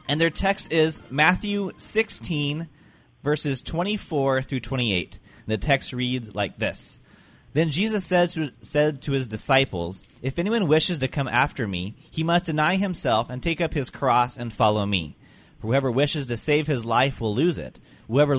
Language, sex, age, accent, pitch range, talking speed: English, male, 30-49, American, 115-145 Hz, 165 wpm